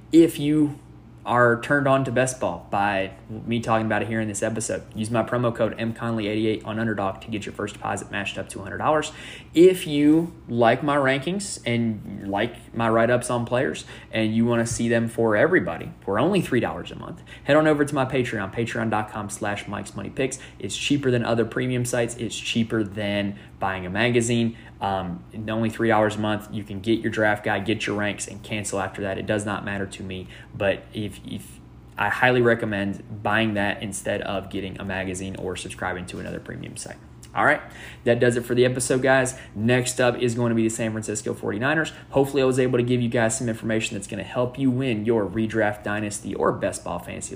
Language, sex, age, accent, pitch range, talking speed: English, male, 20-39, American, 100-120 Hz, 210 wpm